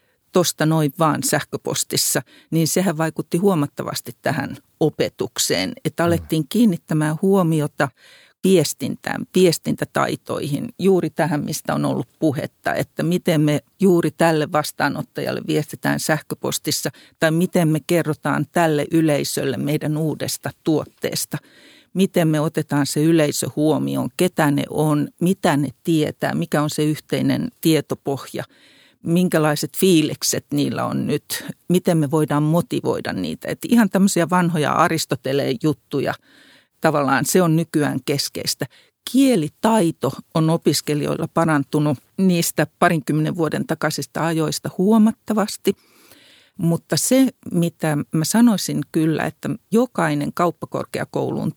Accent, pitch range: native, 150-180 Hz